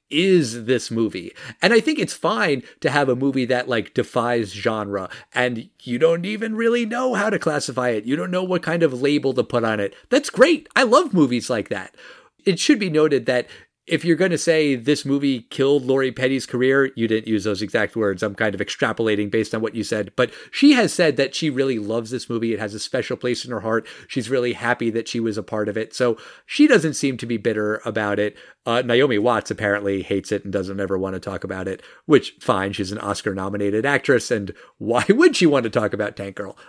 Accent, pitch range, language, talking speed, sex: American, 105-160 Hz, English, 230 wpm, male